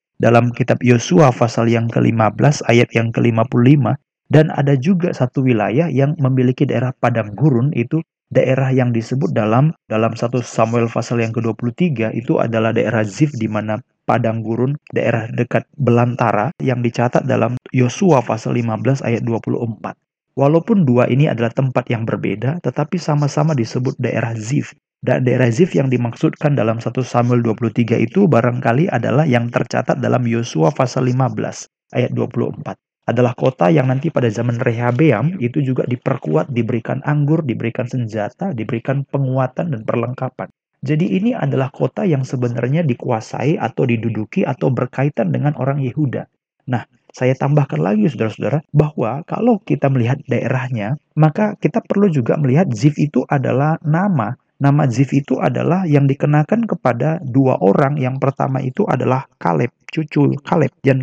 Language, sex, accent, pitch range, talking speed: Indonesian, male, native, 120-150 Hz, 145 wpm